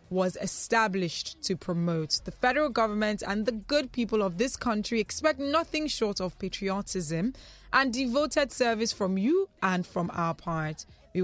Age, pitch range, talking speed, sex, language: 20-39, 170-210 Hz, 155 wpm, female, English